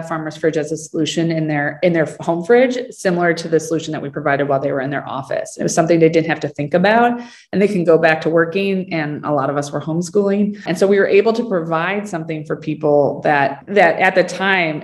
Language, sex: English, female